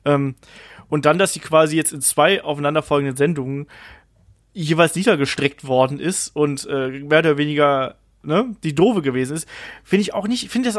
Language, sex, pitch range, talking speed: German, male, 145-175 Hz, 170 wpm